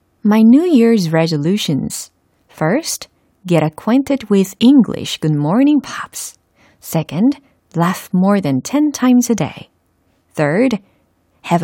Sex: female